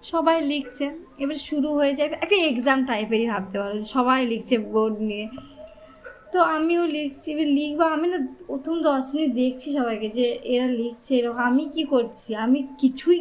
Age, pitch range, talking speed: 20-39, 250-310 Hz, 160 wpm